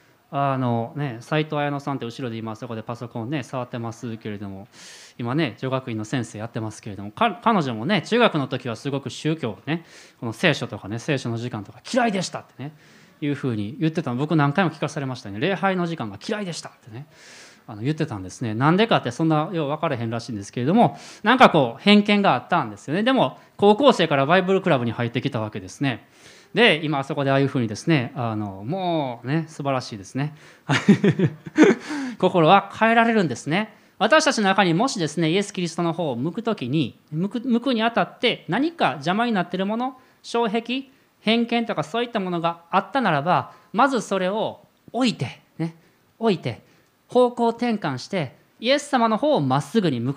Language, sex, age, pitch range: Japanese, male, 20-39, 125-205 Hz